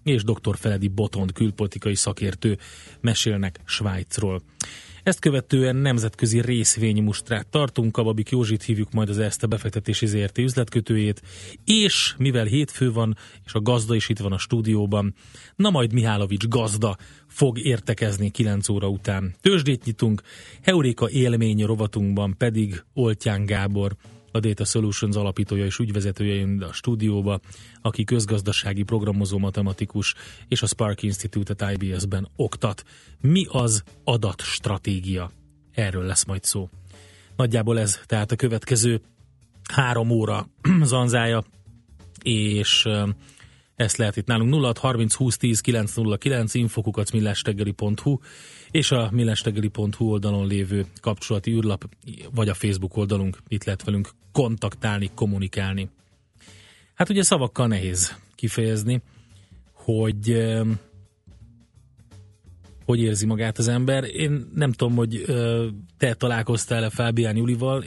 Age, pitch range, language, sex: 30-49, 100-120 Hz, Hungarian, male